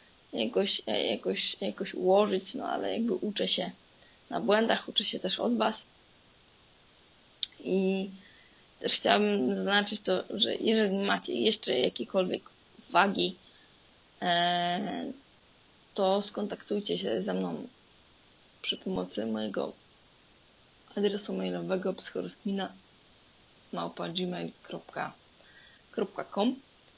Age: 20-39